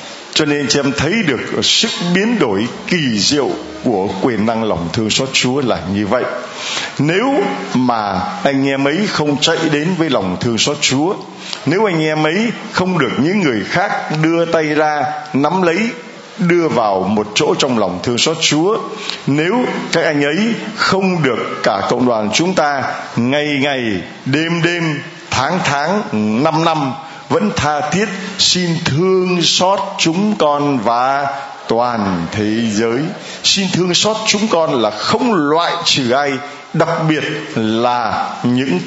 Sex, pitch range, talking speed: male, 125-175 Hz, 155 wpm